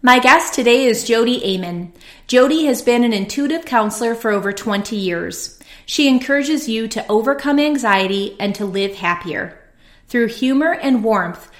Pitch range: 200-245 Hz